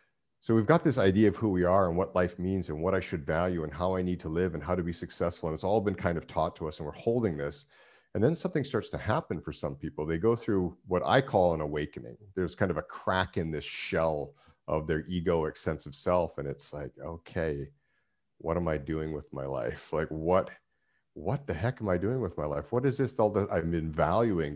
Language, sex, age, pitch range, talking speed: English, male, 50-69, 80-105 Hz, 250 wpm